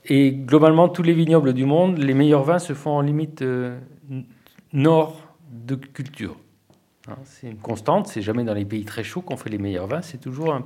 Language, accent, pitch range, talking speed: French, French, 105-145 Hz, 195 wpm